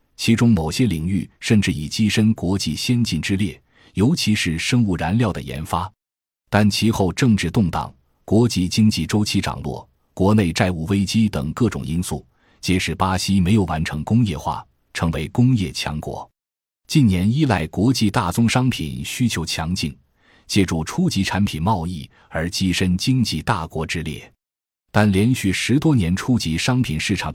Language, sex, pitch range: Chinese, male, 80-110 Hz